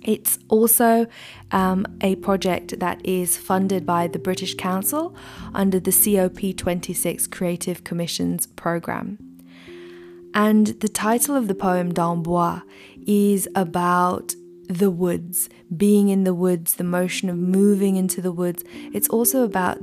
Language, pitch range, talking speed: English, 175-200 Hz, 130 wpm